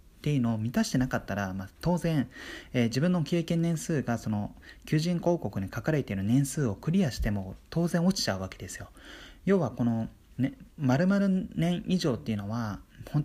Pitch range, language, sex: 110-160 Hz, Japanese, male